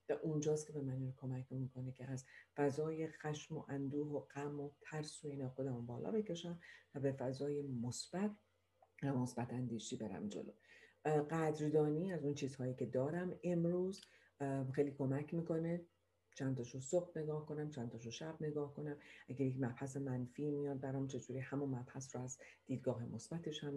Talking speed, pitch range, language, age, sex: 155 wpm, 130-150 Hz, Persian, 40-59, female